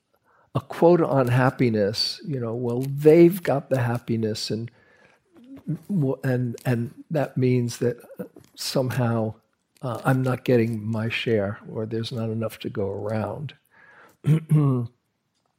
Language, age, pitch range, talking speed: English, 60-79, 115-140 Hz, 115 wpm